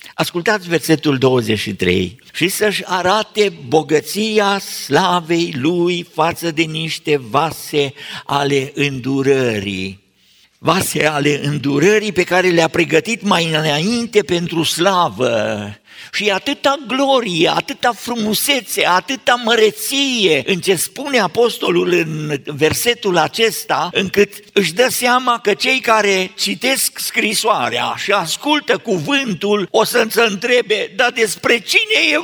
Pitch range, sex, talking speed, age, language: 175-250 Hz, male, 110 wpm, 50-69, Romanian